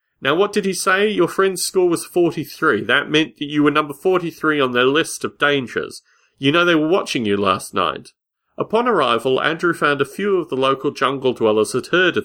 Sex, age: male, 40-59